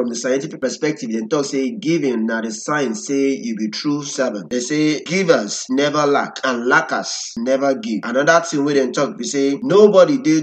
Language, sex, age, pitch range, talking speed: English, male, 20-39, 125-170 Hz, 200 wpm